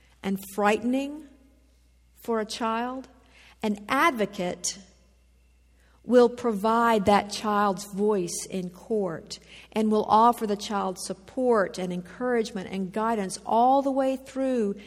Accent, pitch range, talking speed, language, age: American, 165-230 Hz, 115 wpm, English, 50-69